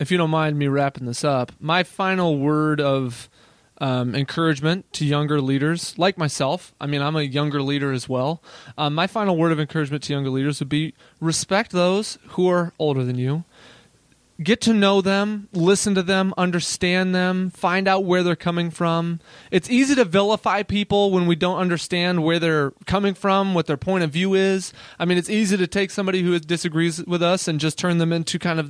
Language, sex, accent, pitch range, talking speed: English, male, American, 155-195 Hz, 205 wpm